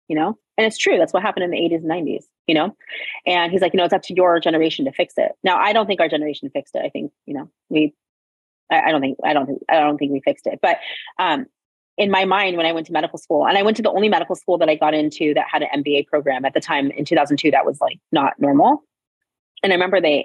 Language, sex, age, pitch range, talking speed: English, female, 30-49, 150-190 Hz, 280 wpm